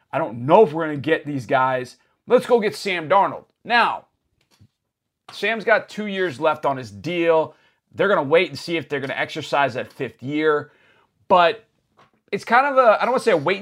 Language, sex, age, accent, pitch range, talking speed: English, male, 30-49, American, 140-195 Hz, 220 wpm